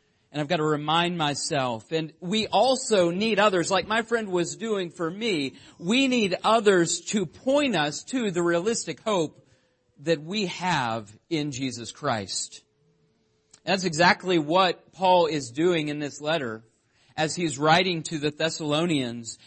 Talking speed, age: 150 wpm, 40-59